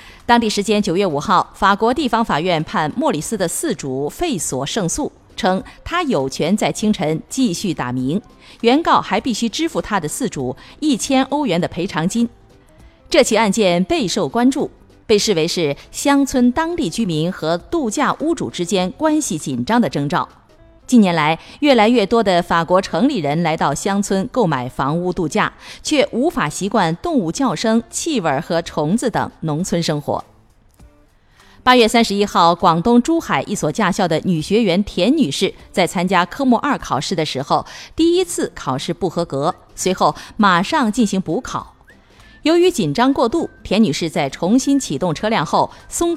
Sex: female